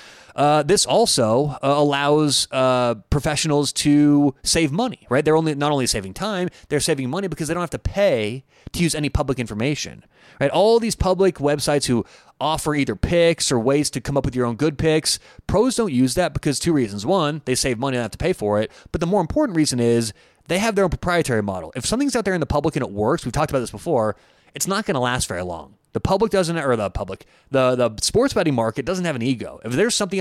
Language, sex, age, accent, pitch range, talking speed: English, male, 30-49, American, 125-170 Hz, 235 wpm